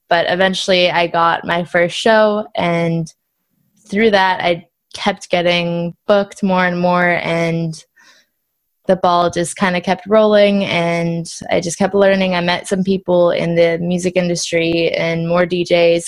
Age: 20-39